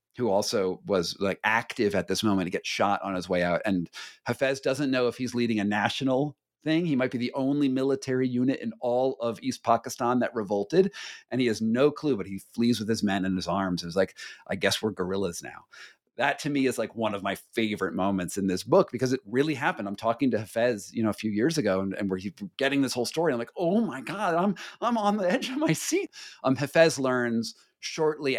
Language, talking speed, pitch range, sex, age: English, 235 wpm, 100-135 Hz, male, 40-59